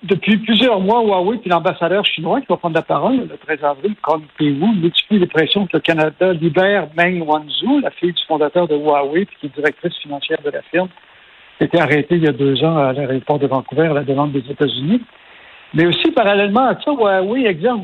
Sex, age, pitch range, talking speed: male, 60-79, 155-195 Hz, 215 wpm